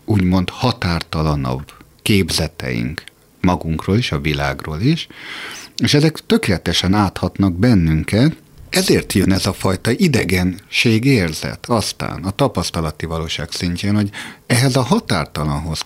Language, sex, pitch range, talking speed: Hungarian, male, 85-105 Hz, 110 wpm